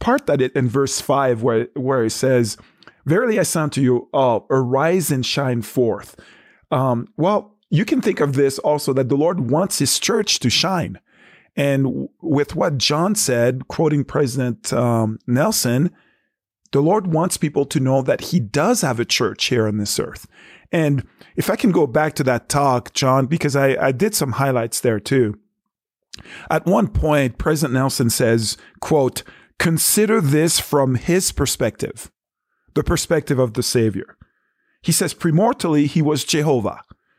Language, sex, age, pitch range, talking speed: English, male, 40-59, 125-160 Hz, 165 wpm